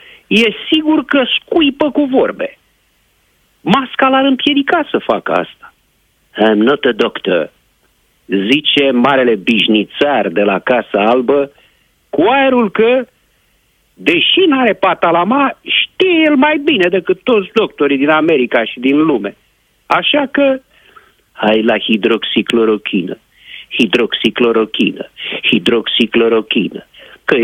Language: Romanian